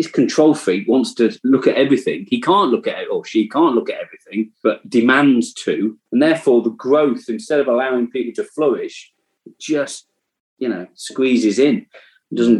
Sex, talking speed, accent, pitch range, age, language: male, 175 wpm, British, 100-170 Hz, 30-49, English